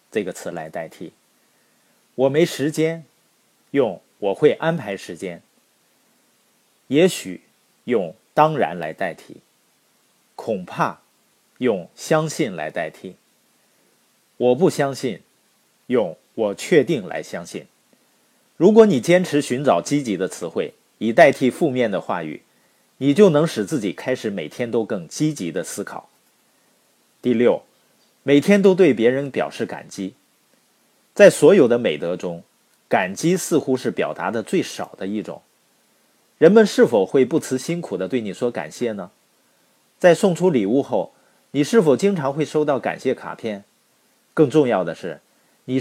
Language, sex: Chinese, male